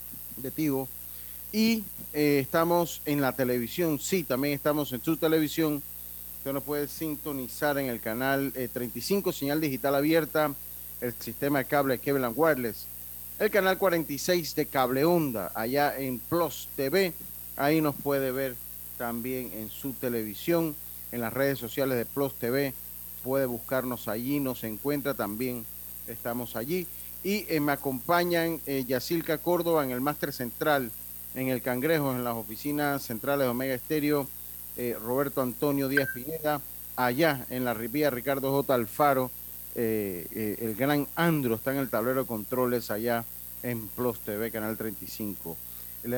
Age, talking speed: 40-59, 150 wpm